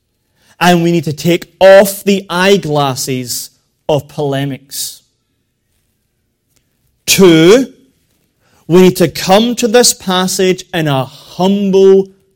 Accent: British